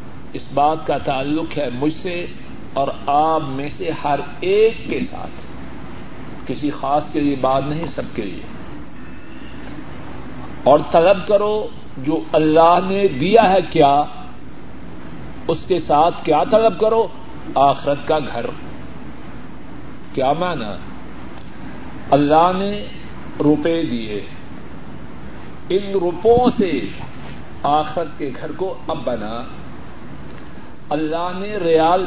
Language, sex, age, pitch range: Urdu, male, 50-69, 155-195 Hz